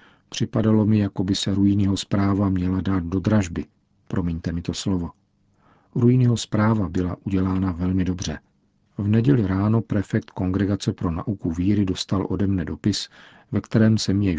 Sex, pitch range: male, 90-105 Hz